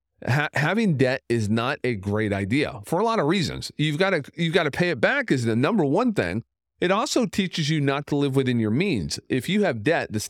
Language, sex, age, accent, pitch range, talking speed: English, male, 40-59, American, 95-140 Hz, 245 wpm